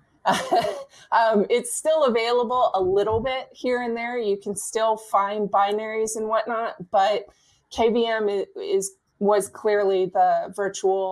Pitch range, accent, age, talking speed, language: 195-240 Hz, American, 20-39, 130 wpm, English